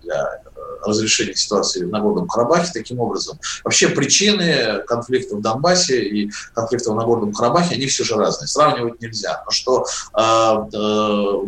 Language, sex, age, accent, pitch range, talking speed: Russian, male, 30-49, native, 115-145 Hz, 140 wpm